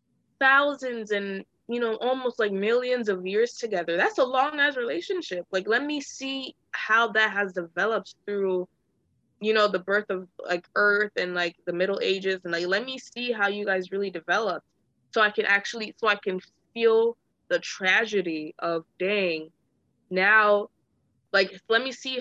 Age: 20-39